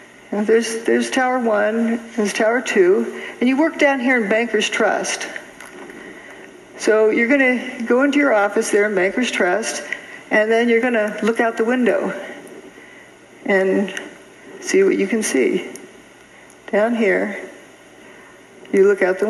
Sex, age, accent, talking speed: female, 60-79, American, 145 wpm